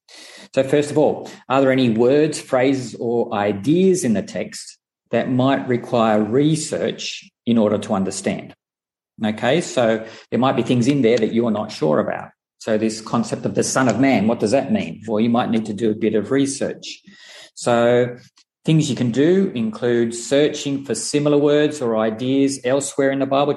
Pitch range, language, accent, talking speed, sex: 110-145 Hz, English, Australian, 190 wpm, male